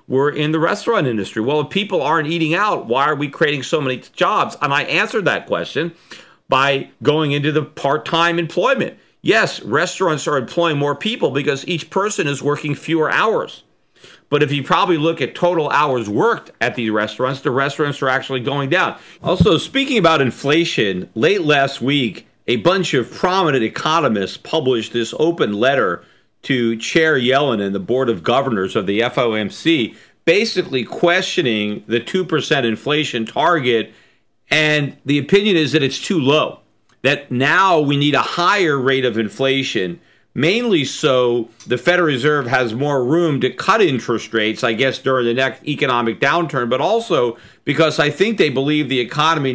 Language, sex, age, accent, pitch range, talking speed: English, male, 40-59, American, 130-160 Hz, 165 wpm